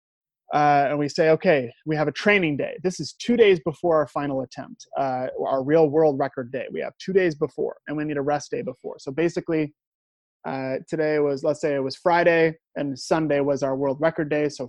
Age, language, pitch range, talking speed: 20-39, English, 140-165 Hz, 220 wpm